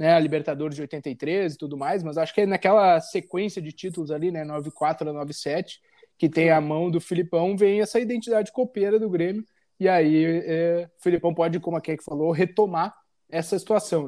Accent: Brazilian